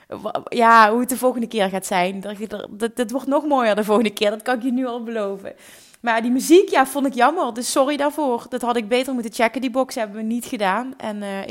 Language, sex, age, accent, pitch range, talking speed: Dutch, female, 20-39, Dutch, 205-240 Hz, 250 wpm